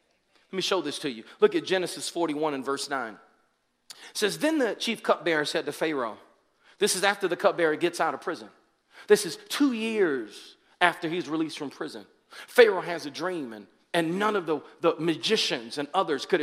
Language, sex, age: English, male, 40-59